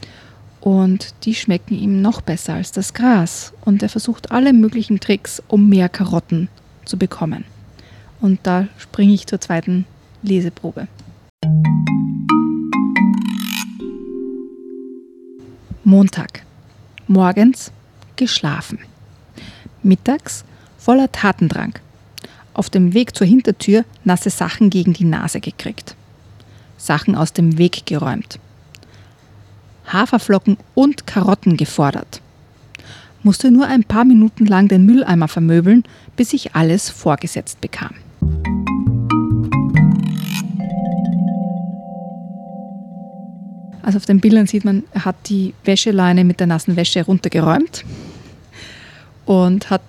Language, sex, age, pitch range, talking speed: German, female, 30-49, 160-205 Hz, 100 wpm